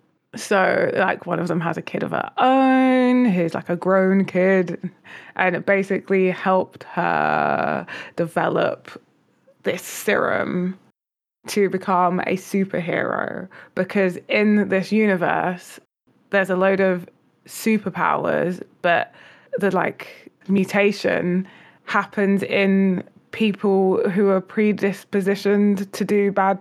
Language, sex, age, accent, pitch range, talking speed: English, female, 20-39, British, 180-205 Hz, 115 wpm